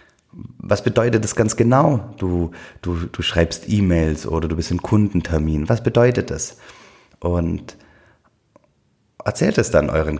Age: 30-49